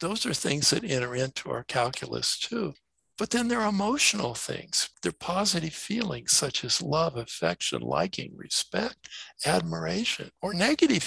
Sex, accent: male, American